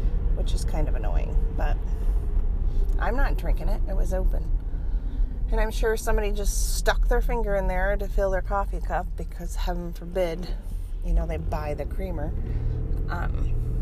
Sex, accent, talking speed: female, American, 165 wpm